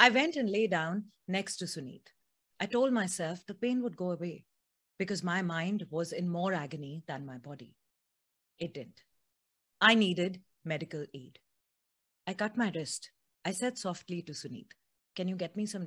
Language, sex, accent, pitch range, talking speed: Hindi, female, native, 160-215 Hz, 175 wpm